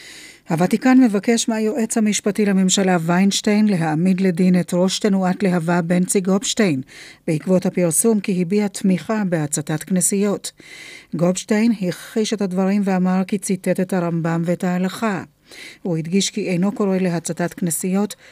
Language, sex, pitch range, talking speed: Hebrew, female, 180-205 Hz, 130 wpm